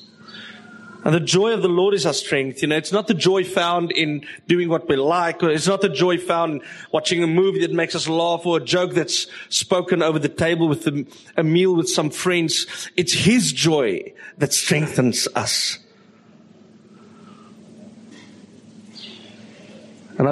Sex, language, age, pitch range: male, English, 50-69, 165-210 Hz